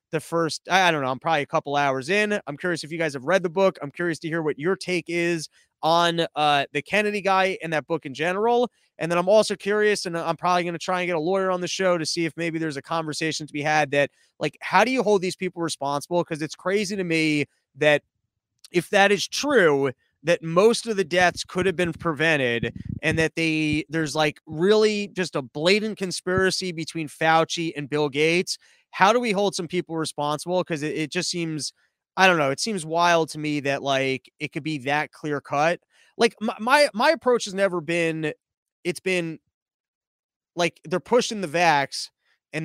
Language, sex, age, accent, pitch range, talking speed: English, male, 30-49, American, 150-185 Hz, 215 wpm